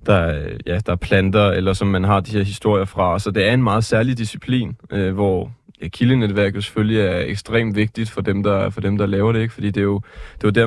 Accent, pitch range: native, 100-115 Hz